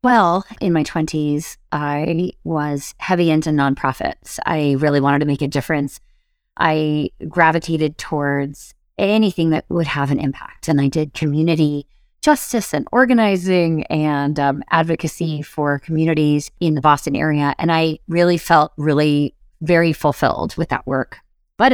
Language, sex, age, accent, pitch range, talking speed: English, female, 30-49, American, 145-165 Hz, 145 wpm